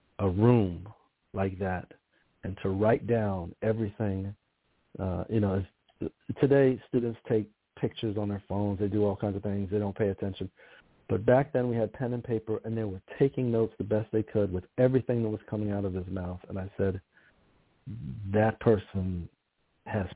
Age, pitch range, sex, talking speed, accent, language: 40-59, 95-115 Hz, male, 180 wpm, American, English